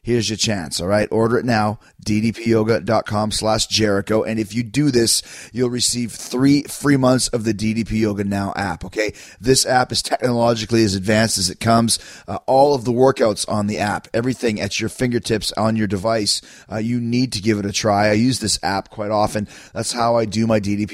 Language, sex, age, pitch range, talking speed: English, male, 30-49, 100-120 Hz, 205 wpm